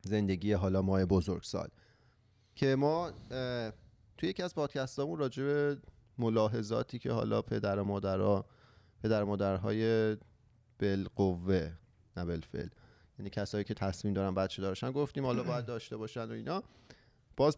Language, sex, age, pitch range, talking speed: Persian, male, 30-49, 105-125 Hz, 135 wpm